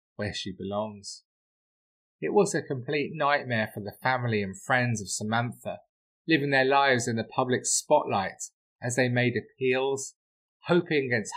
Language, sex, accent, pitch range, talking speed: English, male, British, 105-135 Hz, 150 wpm